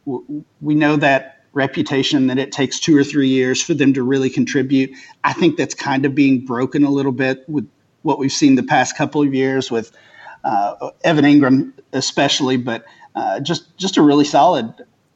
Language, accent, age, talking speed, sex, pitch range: English, American, 40-59, 185 wpm, male, 130-150 Hz